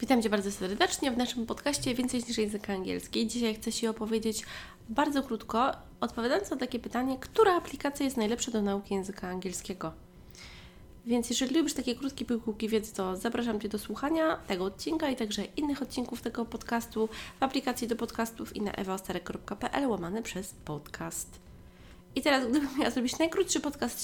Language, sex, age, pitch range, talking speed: Polish, female, 20-39, 205-260 Hz, 165 wpm